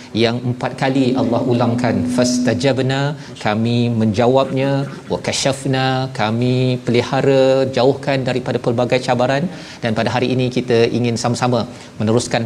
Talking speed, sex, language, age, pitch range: 115 wpm, male, Malayalam, 40-59, 120-135 Hz